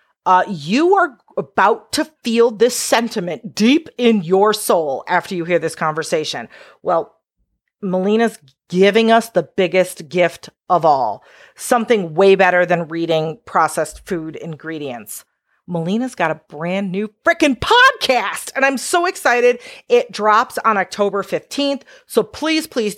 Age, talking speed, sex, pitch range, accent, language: 40-59, 140 wpm, female, 185-245 Hz, American, English